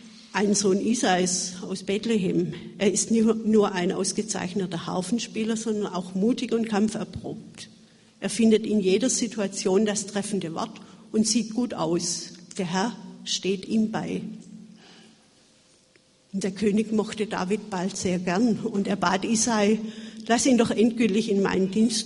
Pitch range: 195-225 Hz